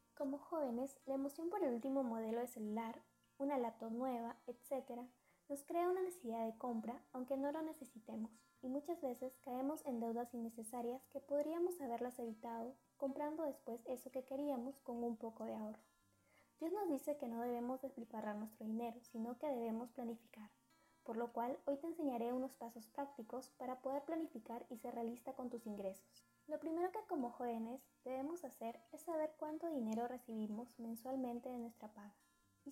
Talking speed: 170 wpm